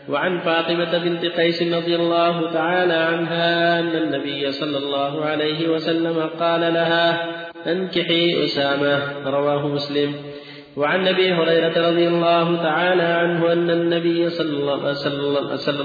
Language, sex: Arabic, male